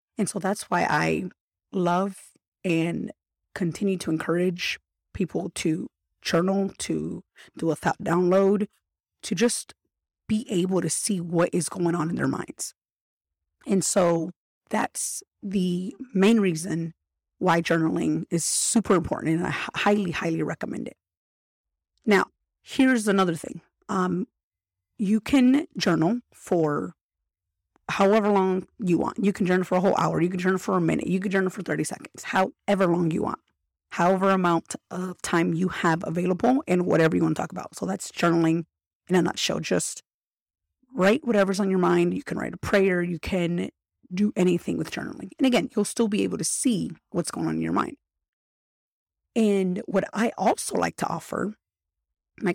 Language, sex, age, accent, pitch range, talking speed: English, female, 30-49, American, 165-195 Hz, 165 wpm